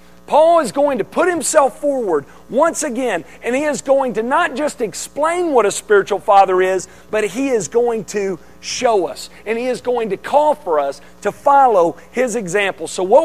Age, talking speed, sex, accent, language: 40-59, 195 wpm, male, American, English